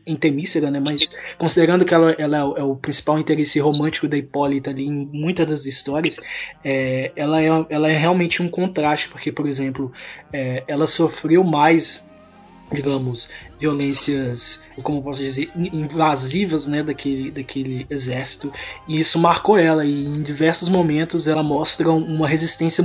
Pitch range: 145-175 Hz